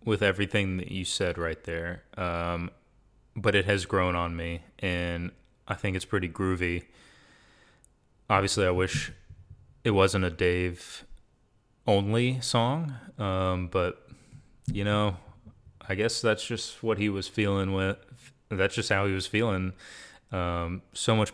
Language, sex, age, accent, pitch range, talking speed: English, male, 30-49, American, 90-105 Hz, 145 wpm